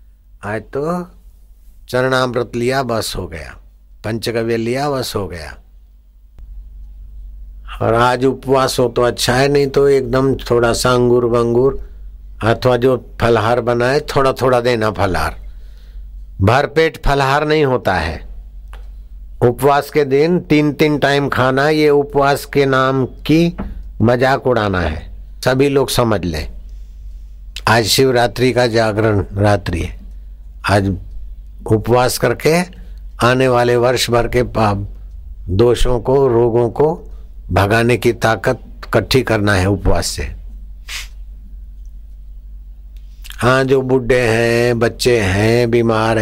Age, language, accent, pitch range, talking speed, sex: 60-79, Hindi, native, 75-125 Hz, 115 wpm, male